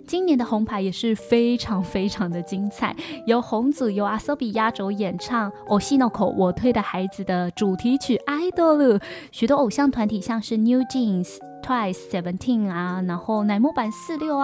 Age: 10-29